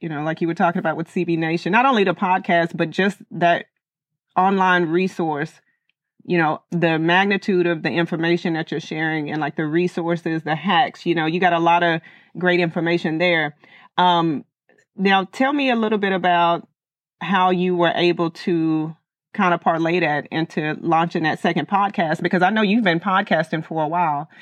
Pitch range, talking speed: 165-185 Hz, 185 wpm